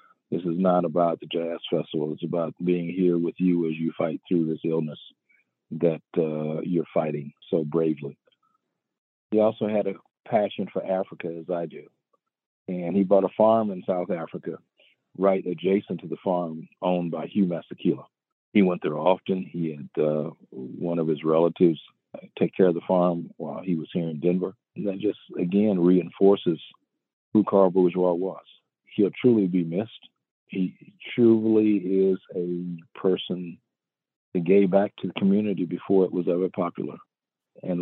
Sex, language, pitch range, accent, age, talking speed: male, English, 80-95 Hz, American, 50-69, 165 wpm